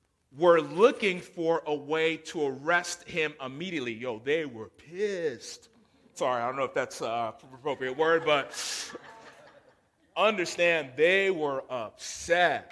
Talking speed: 125 wpm